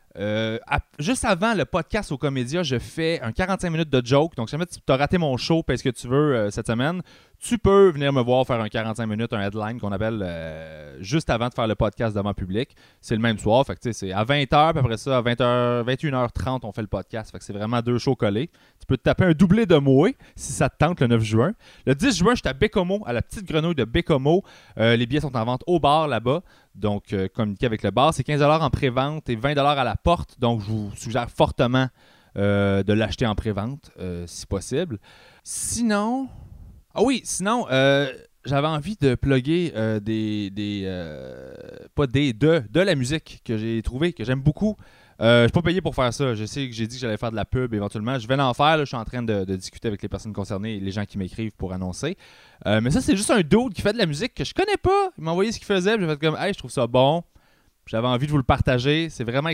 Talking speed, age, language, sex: 250 wpm, 30-49, English, male